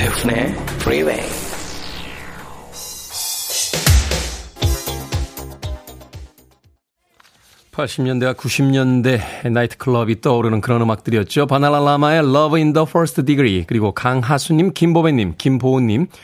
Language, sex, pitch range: Korean, male, 110-160 Hz